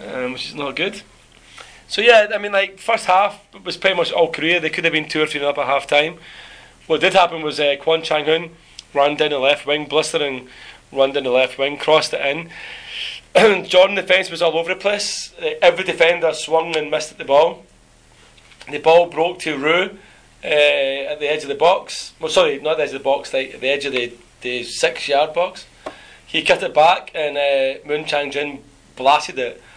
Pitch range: 135-175 Hz